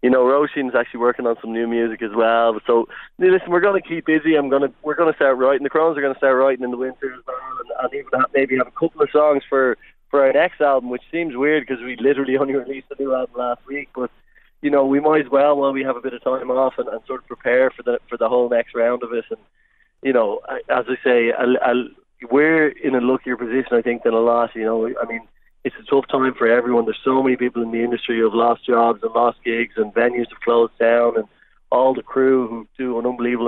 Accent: Irish